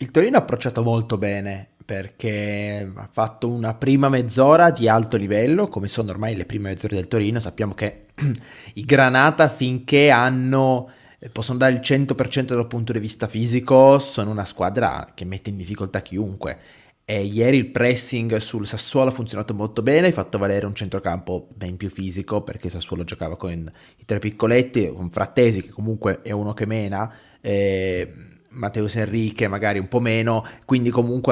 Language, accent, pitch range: Italian, native, 100-125 Hz